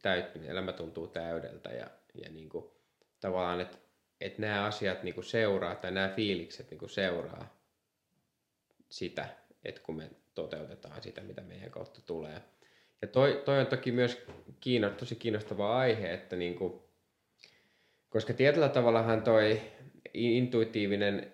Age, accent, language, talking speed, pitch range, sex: 20-39, Finnish, English, 140 wpm, 90-110 Hz, male